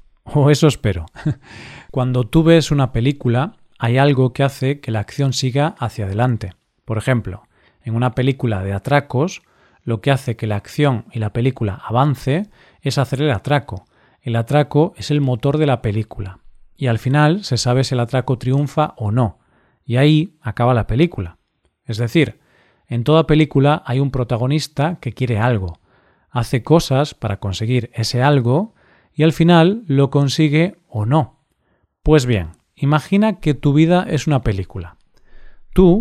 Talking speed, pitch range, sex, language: 160 wpm, 115-150 Hz, male, Spanish